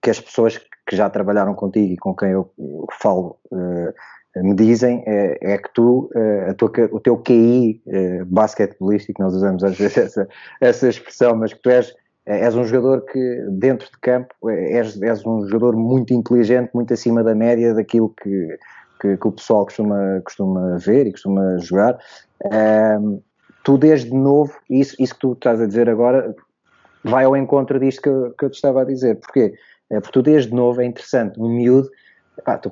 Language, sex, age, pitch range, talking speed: Portuguese, male, 20-39, 105-125 Hz, 180 wpm